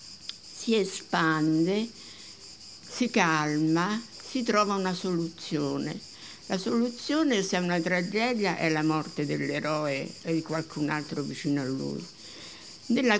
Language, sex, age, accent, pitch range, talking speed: Italian, female, 60-79, native, 150-185 Hz, 120 wpm